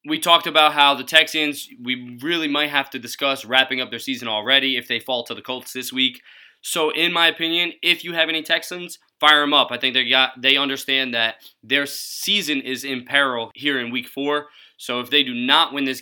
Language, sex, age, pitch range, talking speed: English, male, 20-39, 130-150 Hz, 225 wpm